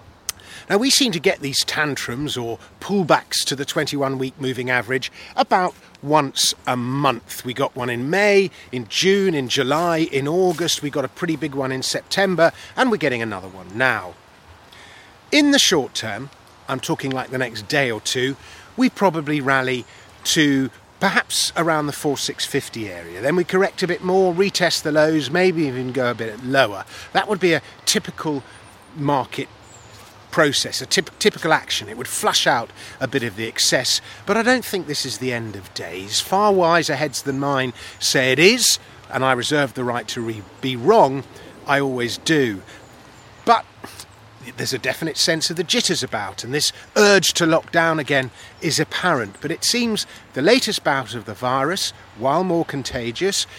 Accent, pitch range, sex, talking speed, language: British, 120-165 Hz, male, 175 wpm, English